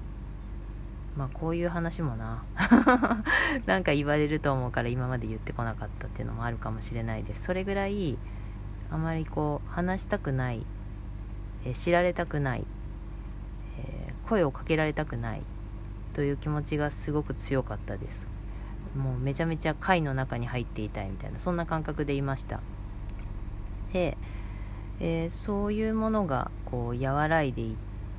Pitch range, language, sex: 100-160 Hz, Japanese, female